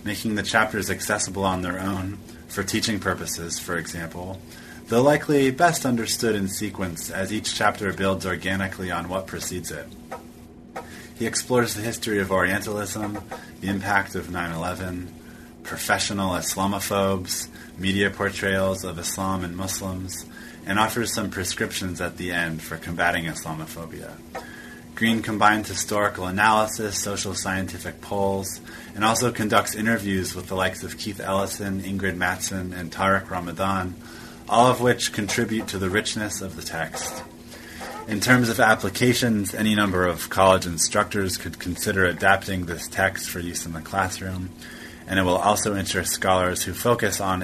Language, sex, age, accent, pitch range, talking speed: English, male, 30-49, American, 90-105 Hz, 145 wpm